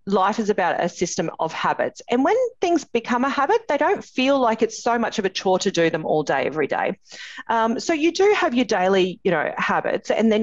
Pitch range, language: 180-245 Hz, English